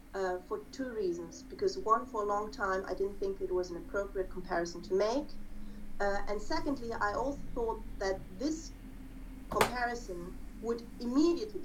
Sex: female